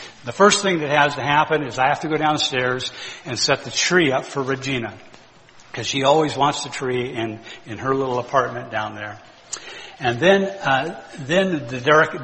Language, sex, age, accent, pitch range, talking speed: English, male, 60-79, American, 120-155 Hz, 190 wpm